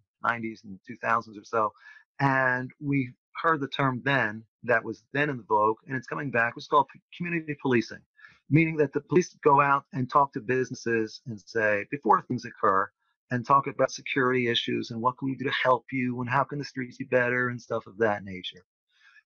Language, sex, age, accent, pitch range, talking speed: English, male, 40-59, American, 125-150 Hz, 205 wpm